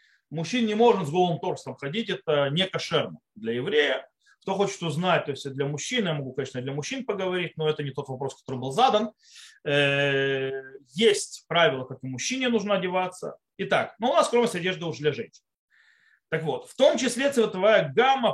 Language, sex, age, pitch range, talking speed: Russian, male, 30-49, 150-225 Hz, 185 wpm